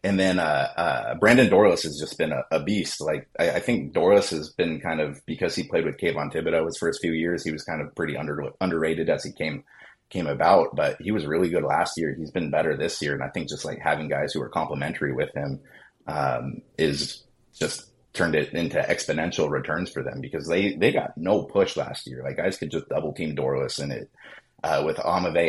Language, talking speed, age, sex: English, 230 wpm, 30-49, male